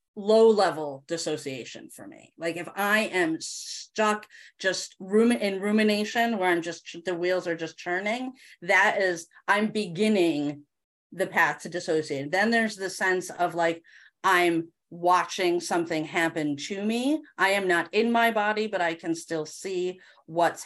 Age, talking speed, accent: 30-49, 155 wpm, American